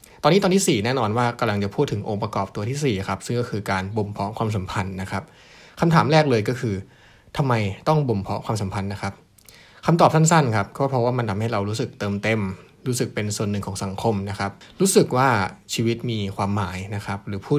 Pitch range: 100-125 Hz